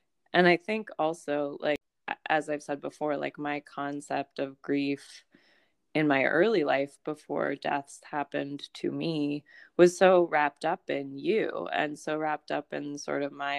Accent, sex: American, female